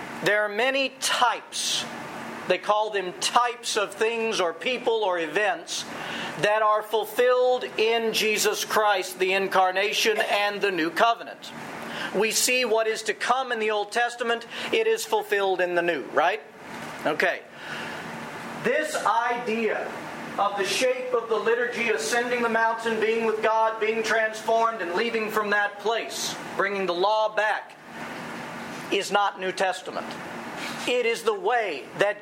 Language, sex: English, male